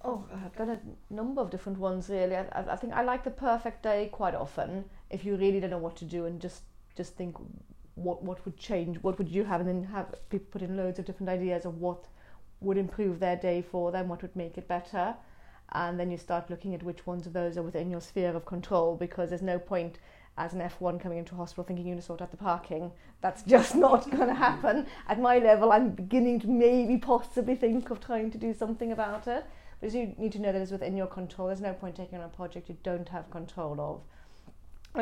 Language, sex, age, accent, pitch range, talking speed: English, female, 30-49, British, 175-200 Hz, 240 wpm